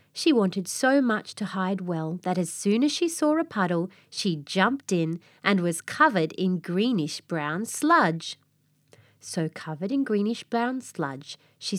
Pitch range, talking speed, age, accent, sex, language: 155-230 Hz, 155 wpm, 30-49, Australian, female, English